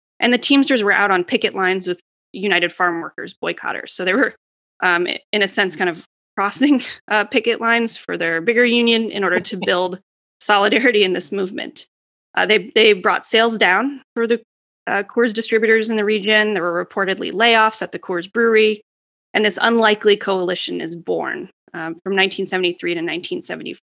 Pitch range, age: 185-225 Hz, 20-39